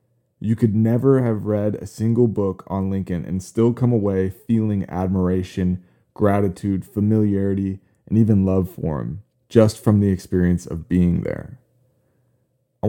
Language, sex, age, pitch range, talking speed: English, male, 20-39, 90-115 Hz, 145 wpm